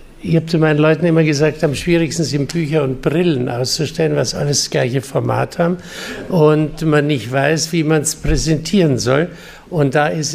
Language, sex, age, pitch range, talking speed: German, male, 60-79, 135-165 Hz, 185 wpm